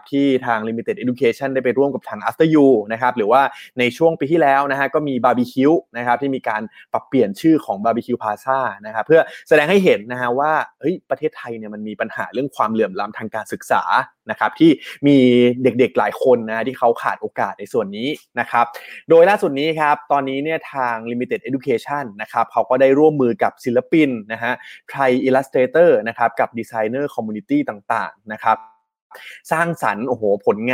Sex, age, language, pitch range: male, 20-39, Thai, 120-150 Hz